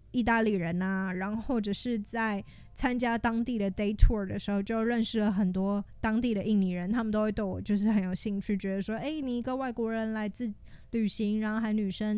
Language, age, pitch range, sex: Chinese, 20-39, 200-230 Hz, female